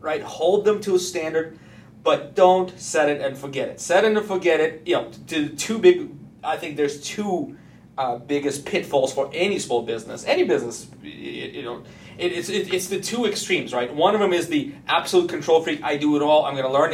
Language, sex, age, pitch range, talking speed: English, male, 30-49, 145-185 Hz, 215 wpm